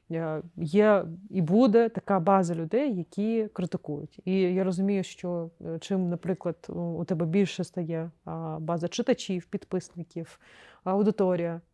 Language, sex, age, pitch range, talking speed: Ukrainian, female, 30-49, 170-200 Hz, 110 wpm